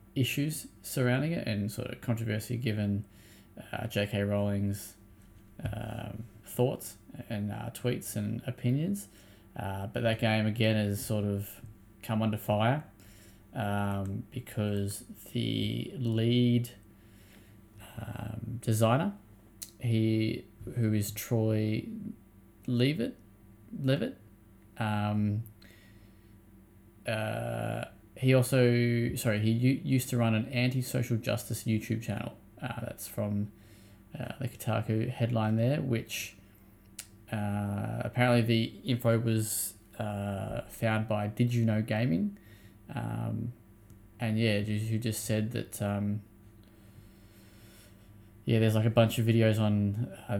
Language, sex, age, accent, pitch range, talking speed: English, male, 20-39, Australian, 105-120 Hz, 115 wpm